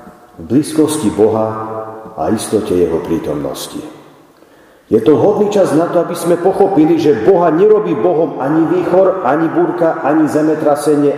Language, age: Slovak, 40-59